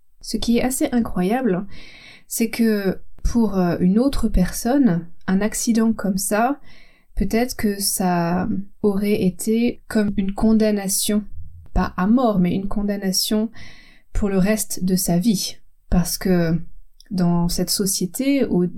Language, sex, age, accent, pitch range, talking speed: French, female, 20-39, French, 185-235 Hz, 130 wpm